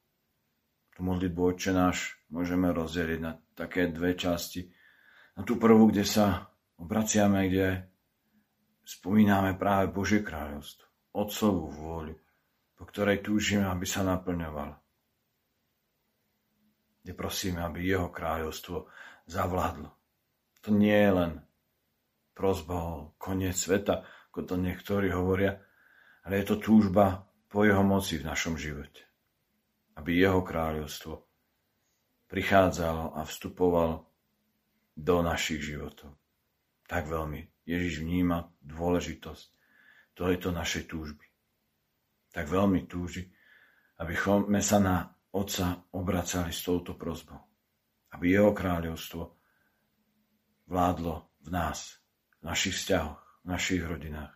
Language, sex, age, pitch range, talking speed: Slovak, male, 50-69, 80-95 Hz, 110 wpm